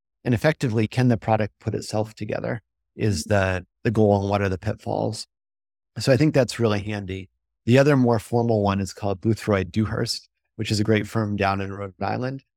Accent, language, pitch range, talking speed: American, English, 95-115 Hz, 190 wpm